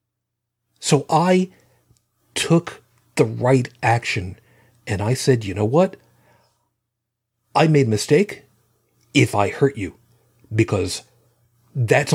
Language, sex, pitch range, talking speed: English, male, 105-130 Hz, 110 wpm